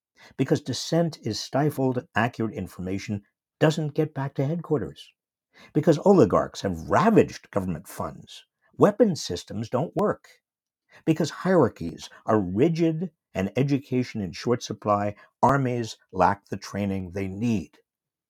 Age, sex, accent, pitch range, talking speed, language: 60-79, male, American, 105-150 Hz, 120 wpm, English